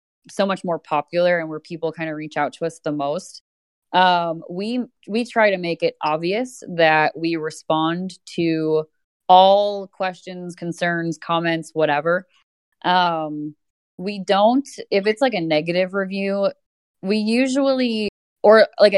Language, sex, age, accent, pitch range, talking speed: English, female, 20-39, American, 160-195 Hz, 140 wpm